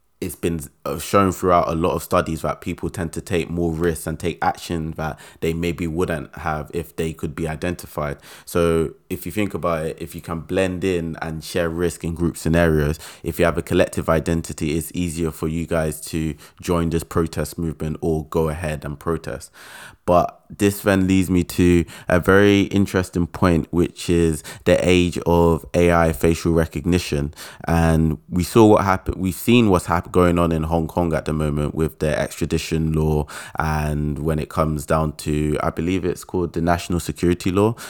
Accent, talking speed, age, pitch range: British, 190 wpm, 20-39, 80-85 Hz